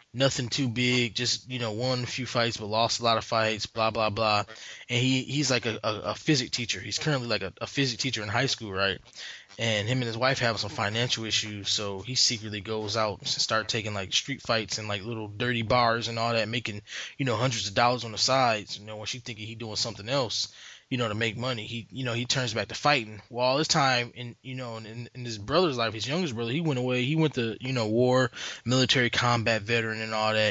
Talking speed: 250 wpm